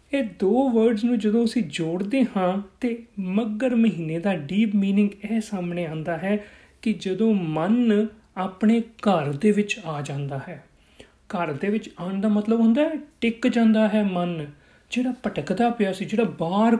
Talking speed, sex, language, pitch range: 165 wpm, male, Punjabi, 170-225 Hz